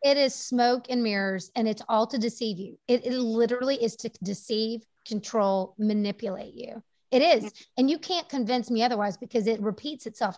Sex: female